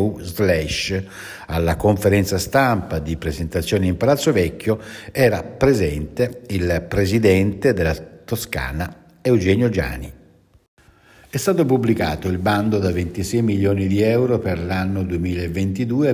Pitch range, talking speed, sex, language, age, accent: 90-115 Hz, 110 wpm, male, Italian, 60-79, native